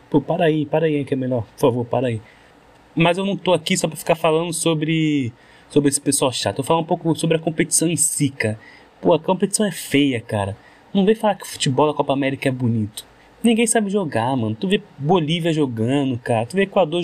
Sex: male